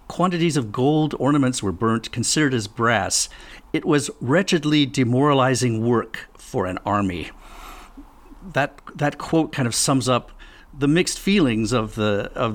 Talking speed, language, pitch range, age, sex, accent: 155 wpm, English, 105-135 Hz, 50-69, male, American